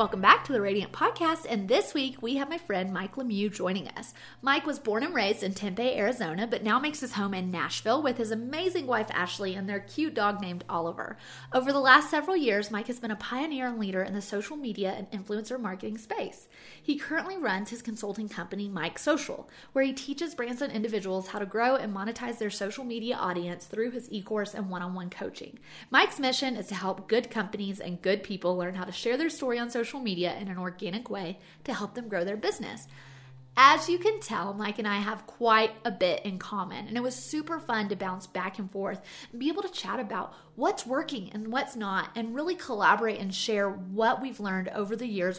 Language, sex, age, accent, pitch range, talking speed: English, female, 30-49, American, 195-255 Hz, 220 wpm